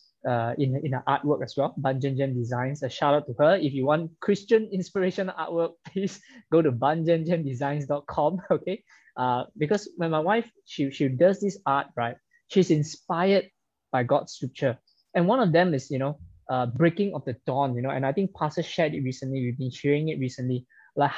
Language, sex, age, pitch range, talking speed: English, male, 20-39, 135-185 Hz, 195 wpm